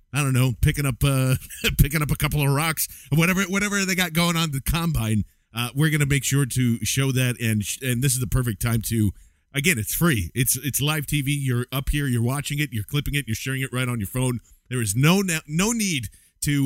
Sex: male